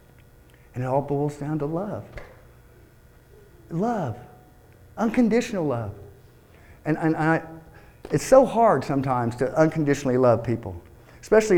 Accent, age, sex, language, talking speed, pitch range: American, 50-69, male, English, 115 wpm, 120-170 Hz